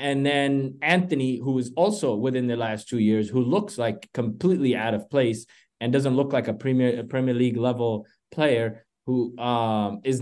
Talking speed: 190 wpm